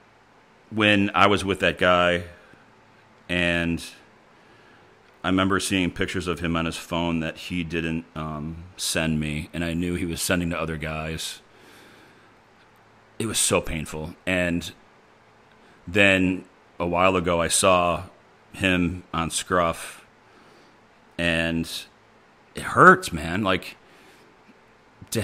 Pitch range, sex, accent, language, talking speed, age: 80-90 Hz, male, American, English, 120 wpm, 40-59